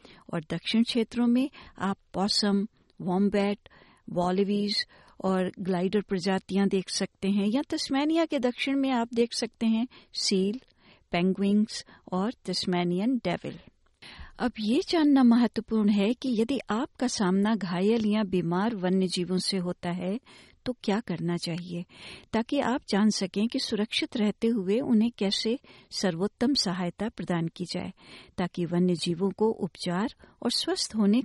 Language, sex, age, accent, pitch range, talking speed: Hindi, female, 60-79, native, 185-225 Hz, 135 wpm